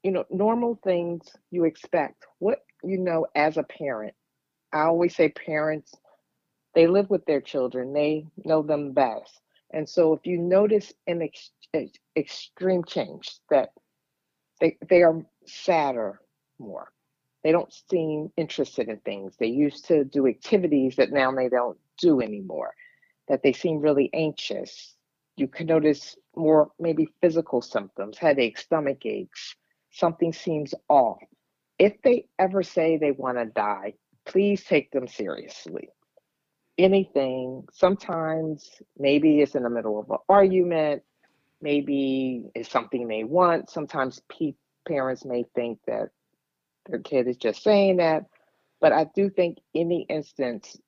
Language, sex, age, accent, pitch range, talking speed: English, female, 50-69, American, 135-175 Hz, 145 wpm